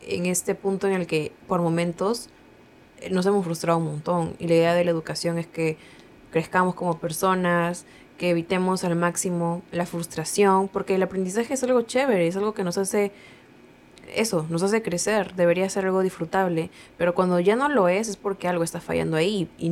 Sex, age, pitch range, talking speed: female, 20-39, 170-195 Hz, 190 wpm